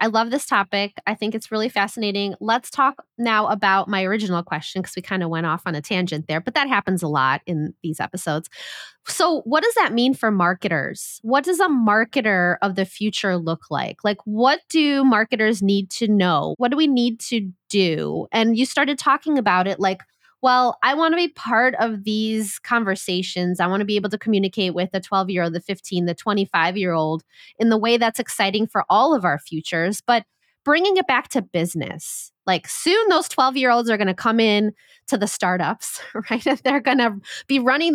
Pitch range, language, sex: 180-235 Hz, English, female